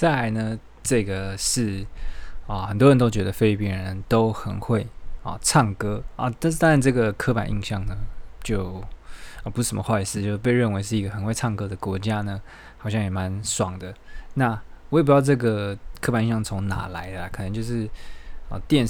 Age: 20-39